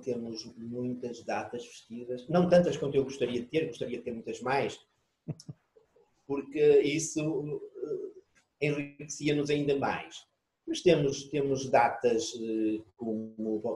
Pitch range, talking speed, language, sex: 110-145 Hz, 115 wpm, Portuguese, male